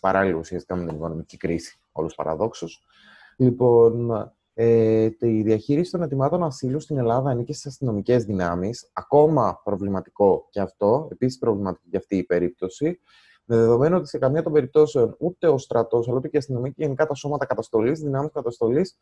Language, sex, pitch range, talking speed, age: Greek, male, 115-160 Hz, 160 wpm, 20-39